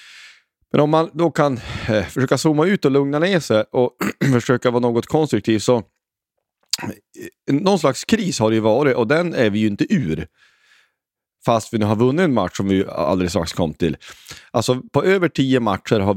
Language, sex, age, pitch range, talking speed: Swedish, male, 30-49, 105-150 Hz, 190 wpm